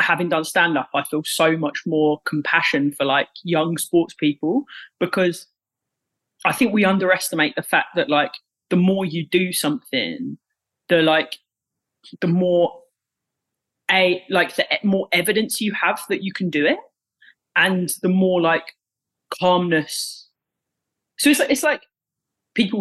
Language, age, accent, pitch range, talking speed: English, 20-39, British, 150-180 Hz, 140 wpm